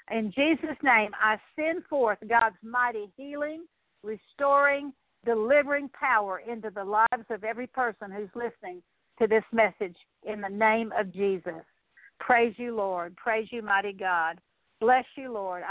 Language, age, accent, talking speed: English, 60-79, American, 145 wpm